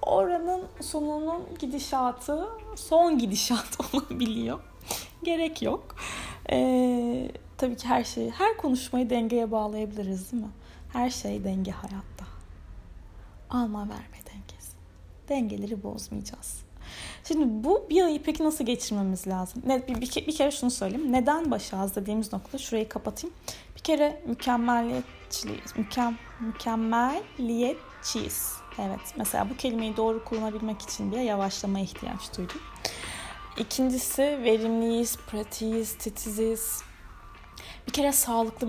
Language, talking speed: Turkish, 110 wpm